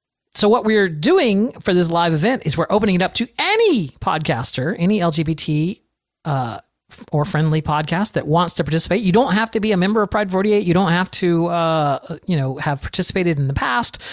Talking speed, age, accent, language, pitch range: 205 wpm, 40-59, American, English, 155-205 Hz